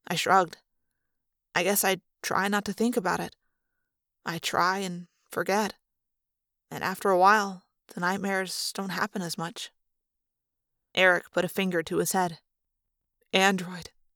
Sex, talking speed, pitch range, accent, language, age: female, 140 wpm, 175-210 Hz, American, English, 20-39